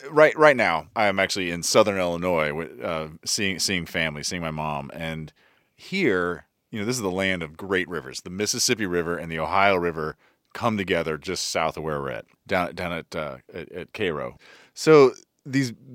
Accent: American